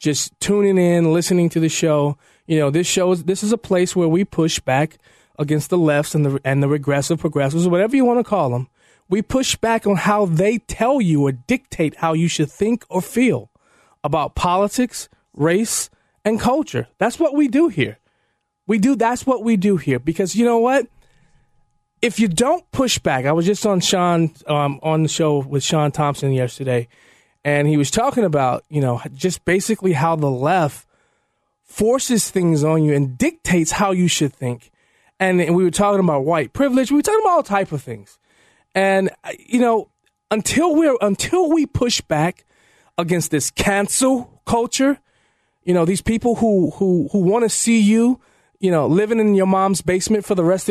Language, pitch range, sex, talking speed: English, 155-220 Hz, male, 190 wpm